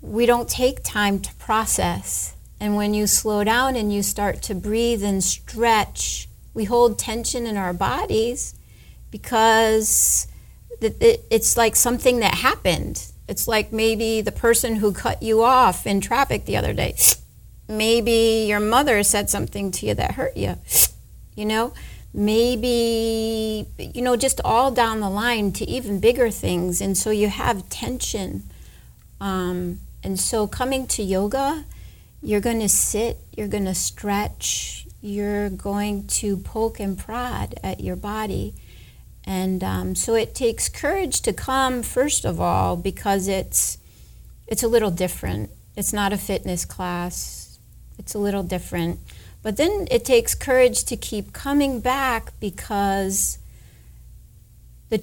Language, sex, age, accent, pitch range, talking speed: English, female, 40-59, American, 195-235 Hz, 145 wpm